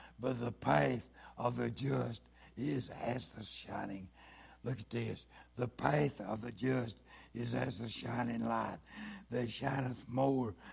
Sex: male